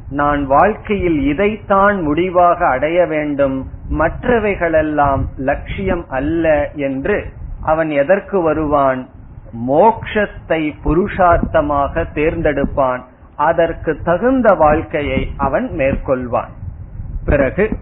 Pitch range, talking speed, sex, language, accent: 135-180 Hz, 75 wpm, male, Tamil, native